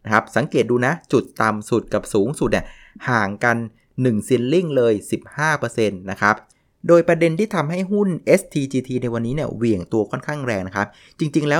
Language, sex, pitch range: Thai, male, 110-150 Hz